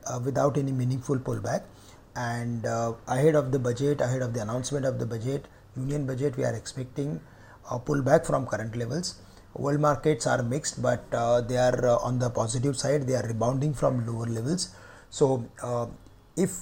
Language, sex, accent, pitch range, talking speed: English, male, Indian, 120-145 Hz, 175 wpm